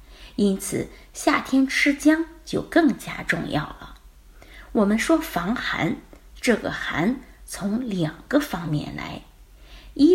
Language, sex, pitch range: Chinese, female, 175-285 Hz